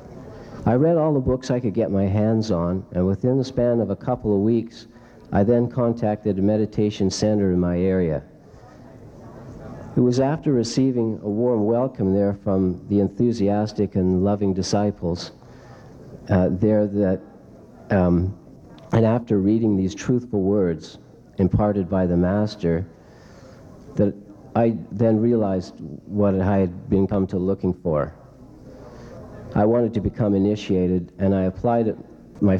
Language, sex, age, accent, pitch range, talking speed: English, male, 60-79, American, 95-115 Hz, 145 wpm